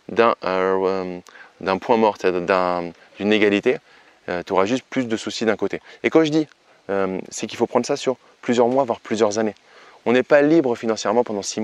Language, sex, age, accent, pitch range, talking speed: French, male, 20-39, French, 100-125 Hz, 205 wpm